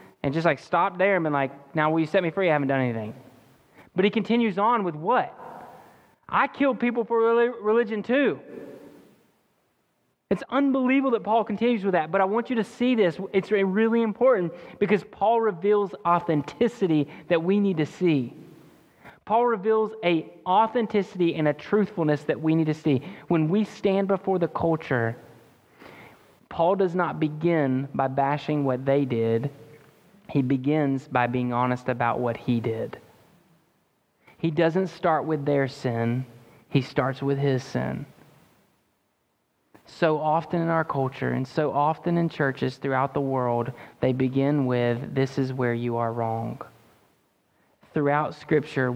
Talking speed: 155 wpm